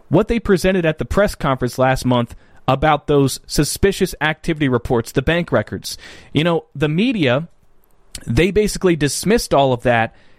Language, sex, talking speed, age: English, male, 155 wpm, 30-49